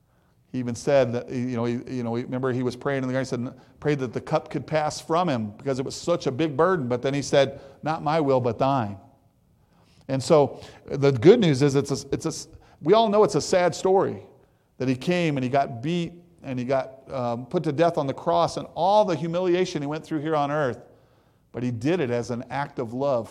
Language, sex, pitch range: English, male, 120-140 Hz